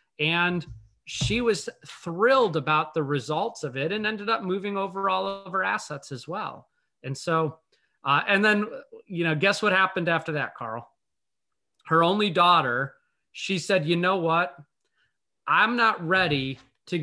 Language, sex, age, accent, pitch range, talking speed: English, male, 30-49, American, 145-190 Hz, 160 wpm